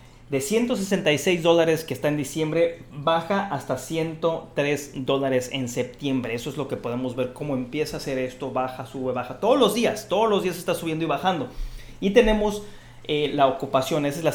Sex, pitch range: male, 125-165 Hz